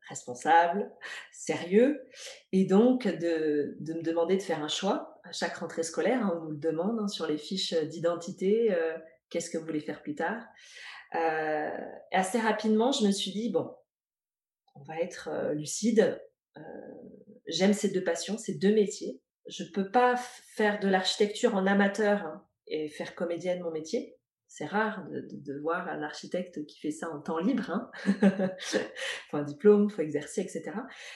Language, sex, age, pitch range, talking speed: French, female, 20-39, 170-225 Hz, 175 wpm